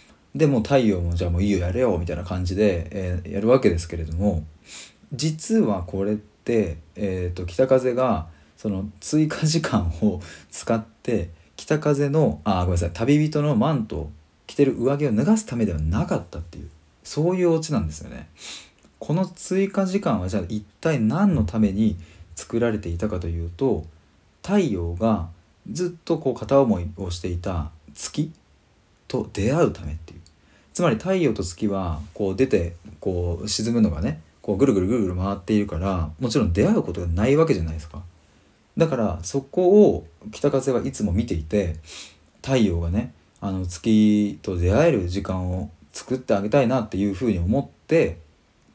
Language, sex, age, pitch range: Japanese, male, 40-59, 85-120 Hz